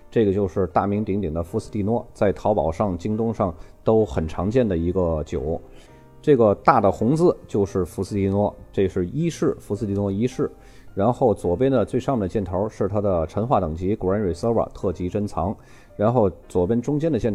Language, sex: Chinese, male